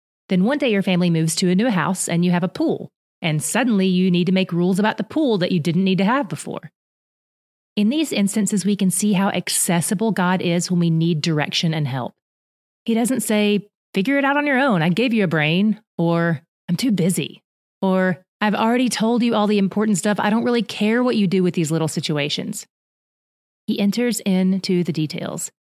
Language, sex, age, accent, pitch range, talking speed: English, female, 30-49, American, 175-215 Hz, 215 wpm